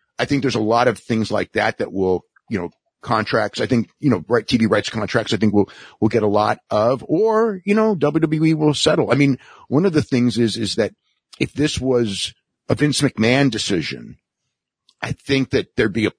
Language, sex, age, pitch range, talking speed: English, male, 50-69, 105-140 Hz, 215 wpm